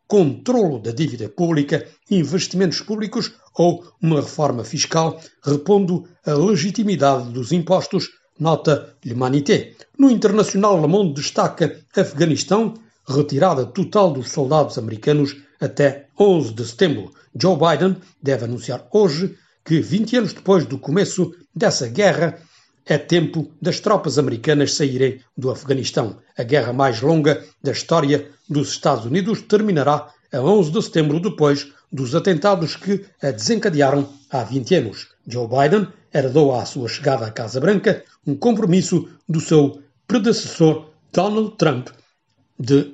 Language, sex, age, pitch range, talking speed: Portuguese, male, 60-79, 140-190 Hz, 130 wpm